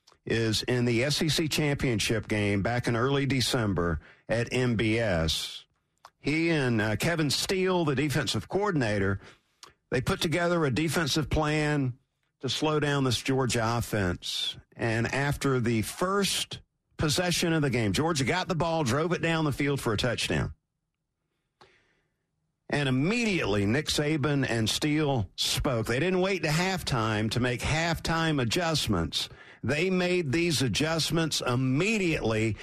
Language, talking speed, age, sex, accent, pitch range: English, 135 wpm, 50-69, male, American, 115-165 Hz